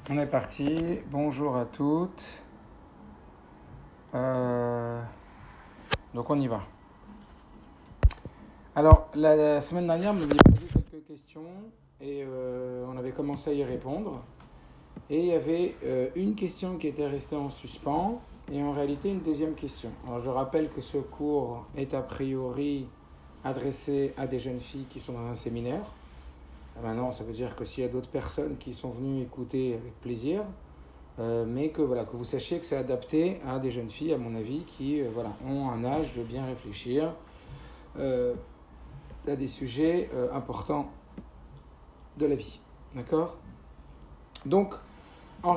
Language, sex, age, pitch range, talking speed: French, male, 50-69, 120-155 Hz, 155 wpm